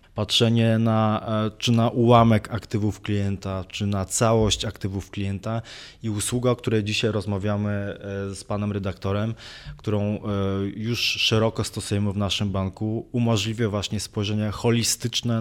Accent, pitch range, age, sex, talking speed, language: native, 105-115 Hz, 20-39, male, 125 wpm, Polish